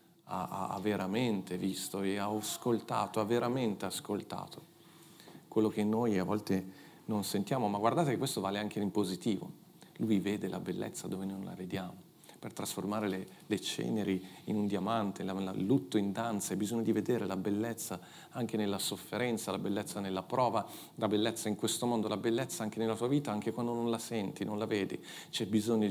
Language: Italian